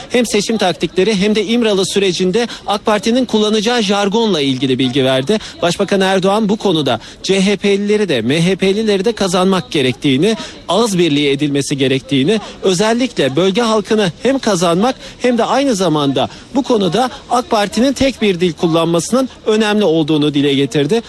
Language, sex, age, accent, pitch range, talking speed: Turkish, male, 50-69, native, 165-215 Hz, 140 wpm